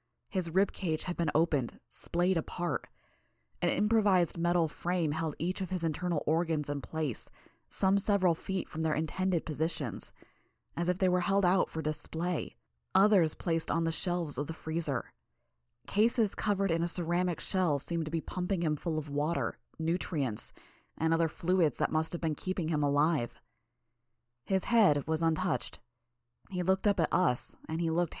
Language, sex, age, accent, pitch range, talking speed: English, female, 20-39, American, 140-180 Hz, 170 wpm